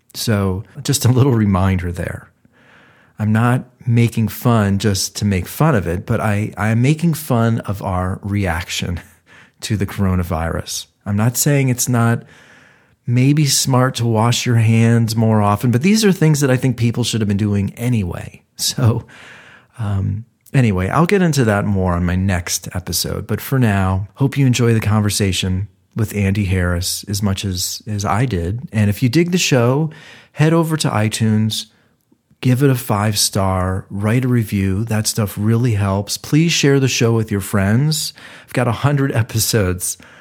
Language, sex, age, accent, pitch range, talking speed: English, male, 40-59, American, 100-125 Hz, 170 wpm